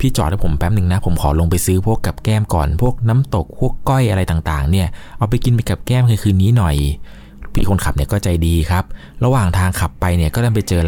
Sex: male